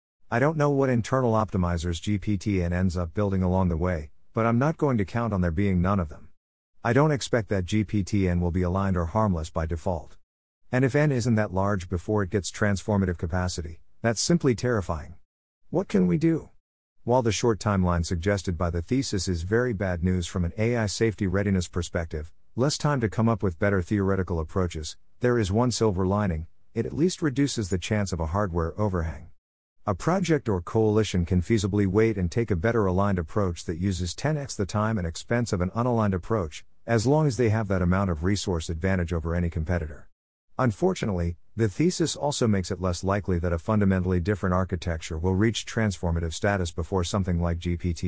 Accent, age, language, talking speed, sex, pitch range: American, 50-69, English, 195 wpm, male, 90-115 Hz